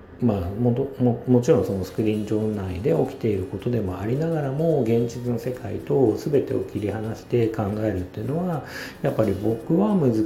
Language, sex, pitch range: Japanese, male, 95-125 Hz